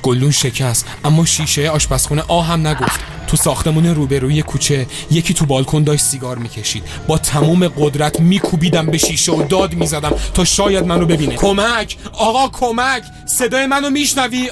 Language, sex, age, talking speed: Persian, male, 30-49, 155 wpm